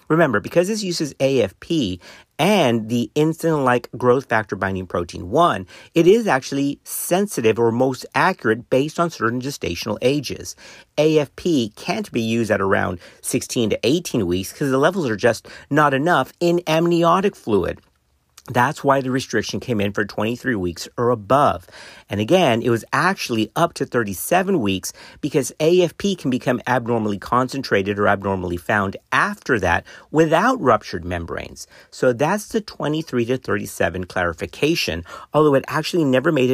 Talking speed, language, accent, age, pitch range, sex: 150 wpm, English, American, 50-69, 105-150 Hz, male